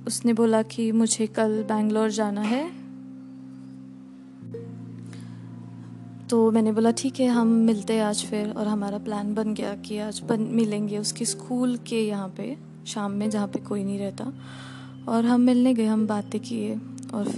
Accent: Indian